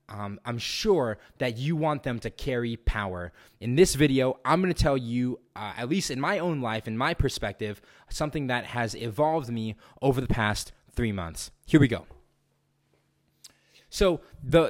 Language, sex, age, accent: English, male, 20-39, American